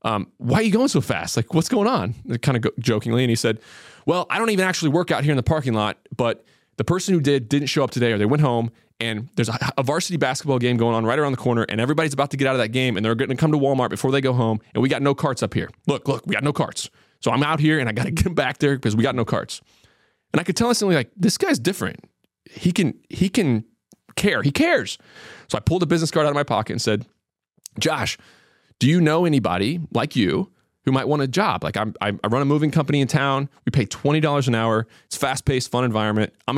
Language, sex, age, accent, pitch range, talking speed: English, male, 20-39, American, 115-150 Hz, 265 wpm